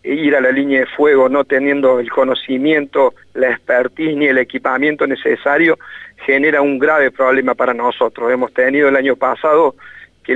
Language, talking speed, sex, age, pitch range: Spanish, 170 wpm, male, 40-59, 125-145 Hz